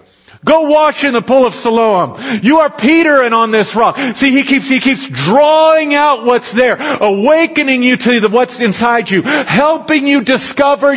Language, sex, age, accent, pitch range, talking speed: English, male, 40-59, American, 220-275 Hz, 180 wpm